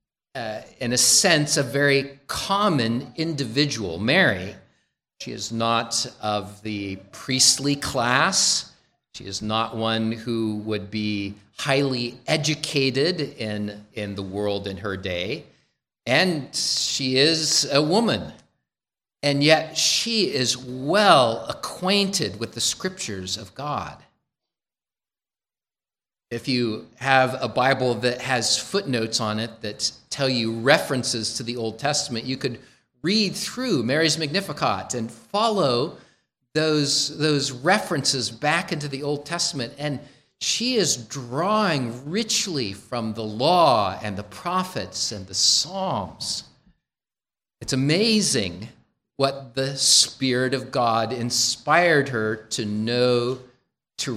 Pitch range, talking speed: 115-150 Hz, 120 wpm